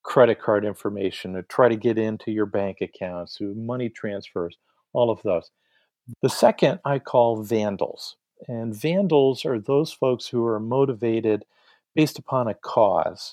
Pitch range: 110-145 Hz